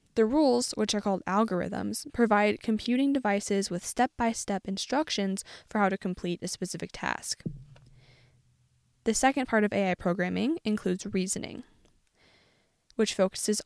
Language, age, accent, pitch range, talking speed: English, 10-29, American, 180-225 Hz, 125 wpm